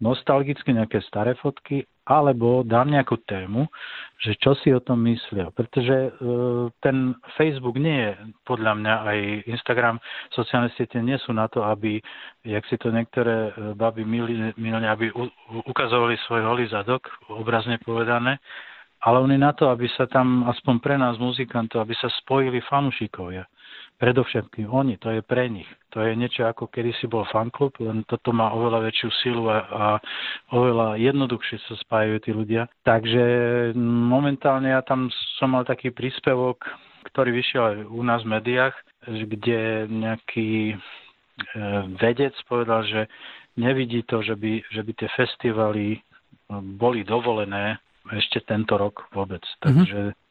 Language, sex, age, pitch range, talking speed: Slovak, male, 40-59, 110-125 Hz, 140 wpm